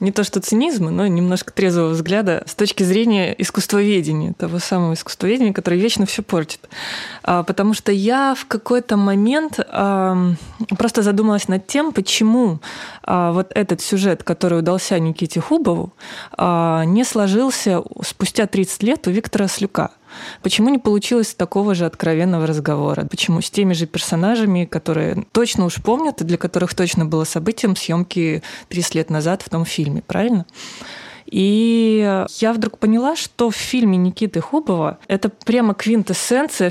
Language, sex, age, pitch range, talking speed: Russian, female, 20-39, 170-215 Hz, 140 wpm